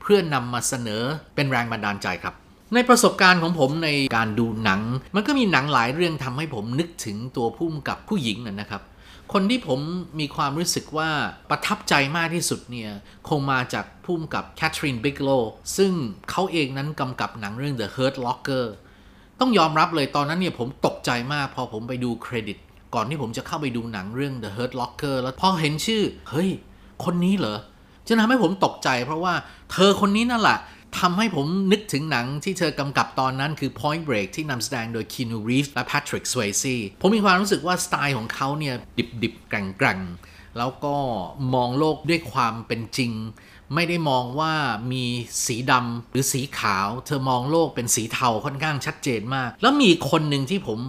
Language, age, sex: Thai, 20-39, male